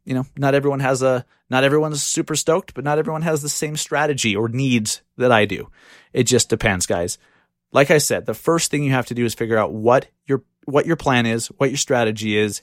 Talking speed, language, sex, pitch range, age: 235 wpm, English, male, 110-140 Hz, 30-49